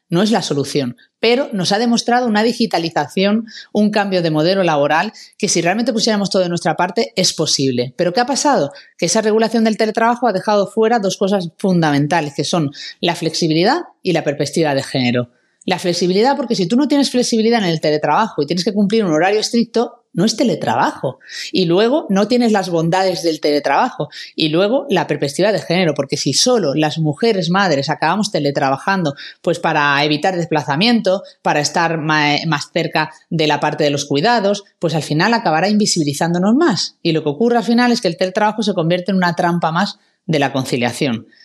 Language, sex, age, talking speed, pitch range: Spanish, female, 30-49, 190 wpm, 155-225 Hz